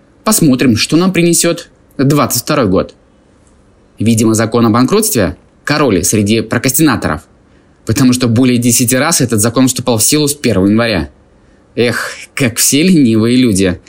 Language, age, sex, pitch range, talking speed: Russian, 20-39, male, 105-145 Hz, 135 wpm